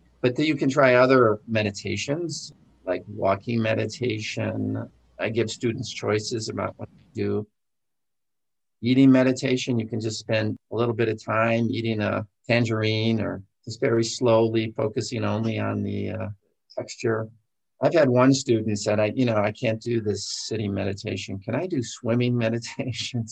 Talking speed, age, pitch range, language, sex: 155 wpm, 50-69, 105-120 Hz, English, male